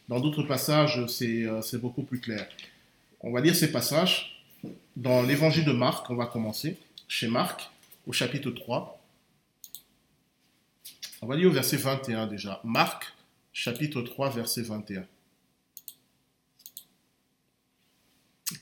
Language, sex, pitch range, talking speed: French, male, 115-150 Hz, 120 wpm